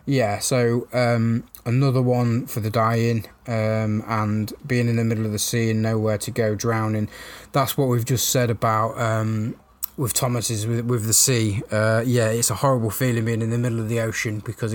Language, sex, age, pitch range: English, male, 20-39, 110-135 Hz